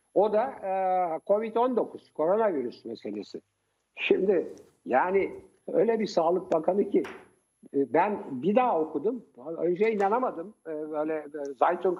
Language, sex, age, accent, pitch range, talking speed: Turkish, male, 60-79, native, 150-215 Hz, 105 wpm